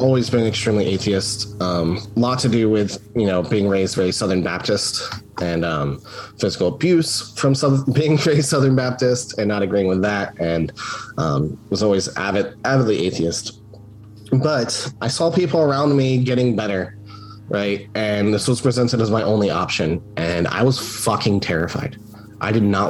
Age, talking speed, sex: 30-49, 165 wpm, male